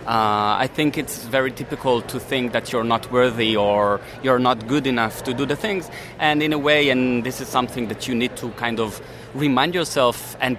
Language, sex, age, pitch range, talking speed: English, male, 30-49, 115-155 Hz, 215 wpm